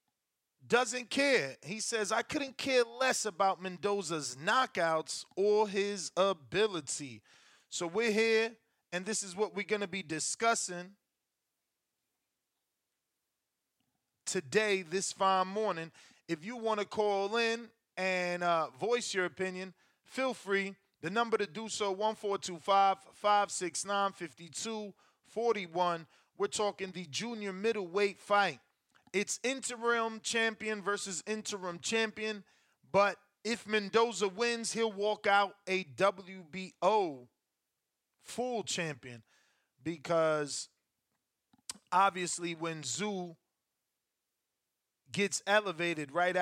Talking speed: 100 wpm